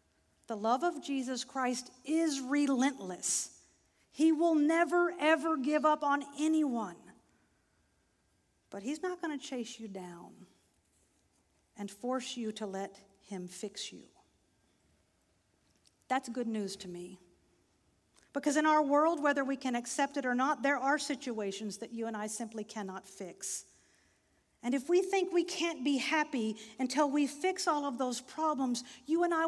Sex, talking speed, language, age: female, 155 wpm, English, 50-69